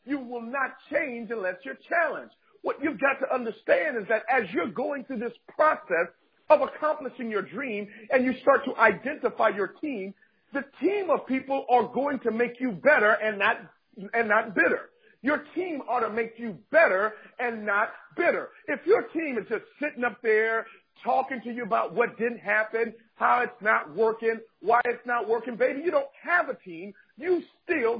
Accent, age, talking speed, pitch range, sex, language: American, 50-69, 185 wpm, 225-290 Hz, male, English